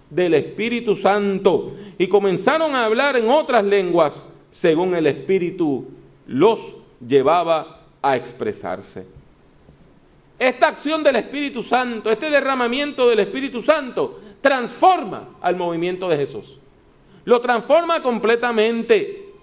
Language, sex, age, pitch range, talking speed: English, male, 40-59, 200-285 Hz, 110 wpm